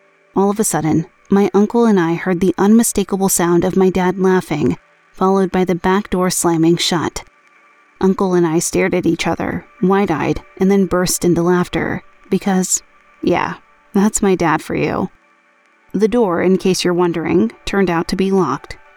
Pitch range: 175-200 Hz